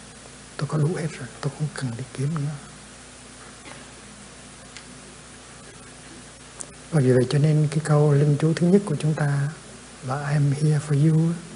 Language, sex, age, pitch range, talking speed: Vietnamese, male, 60-79, 130-155 Hz, 155 wpm